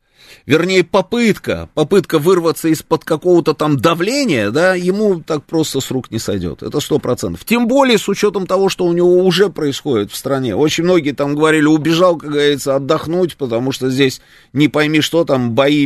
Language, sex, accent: Russian, male, native